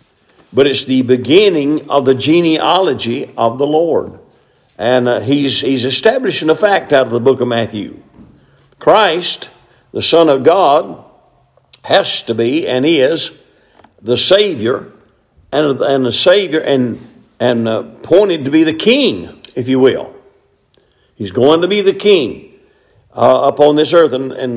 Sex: male